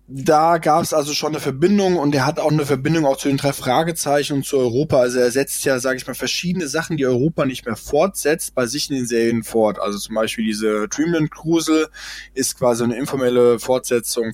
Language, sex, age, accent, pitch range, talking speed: German, male, 20-39, German, 120-150 Hz, 215 wpm